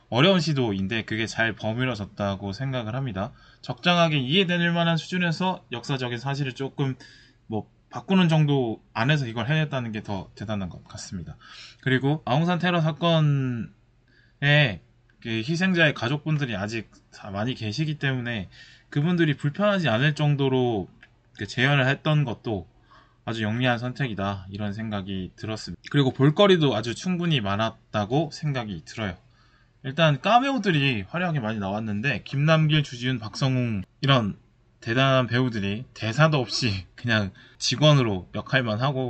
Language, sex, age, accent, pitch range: Korean, male, 20-39, native, 110-150 Hz